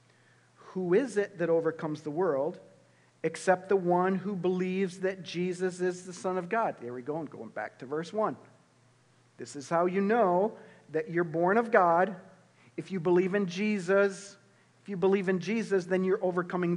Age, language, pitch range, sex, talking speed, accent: 50-69, English, 150-195 Hz, male, 185 wpm, American